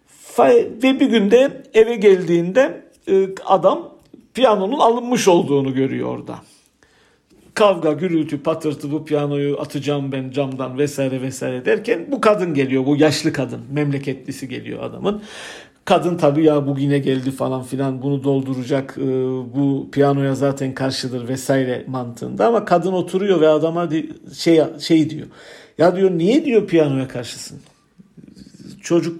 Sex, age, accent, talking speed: male, 60-79, native, 125 wpm